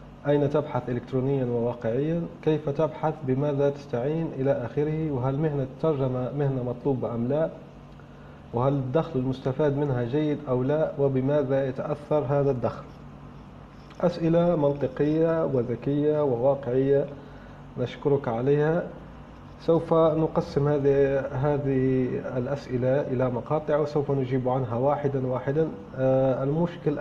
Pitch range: 130-160 Hz